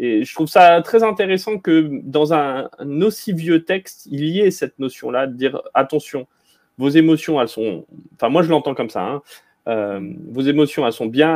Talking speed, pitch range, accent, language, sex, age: 195 wpm, 115-155 Hz, French, French, male, 30-49